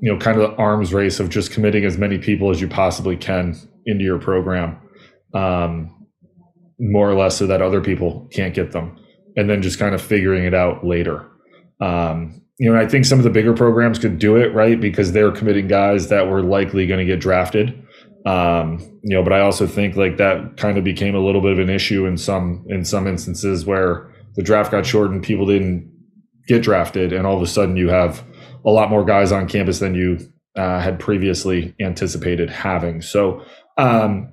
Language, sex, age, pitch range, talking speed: English, male, 20-39, 95-110 Hz, 210 wpm